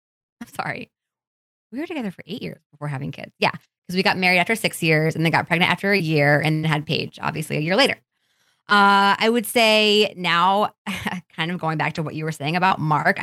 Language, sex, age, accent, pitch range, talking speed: English, female, 20-39, American, 155-200 Hz, 220 wpm